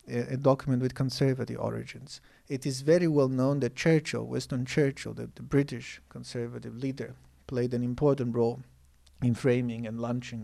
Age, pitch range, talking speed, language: 40-59, 125-145 Hz, 150 wpm, English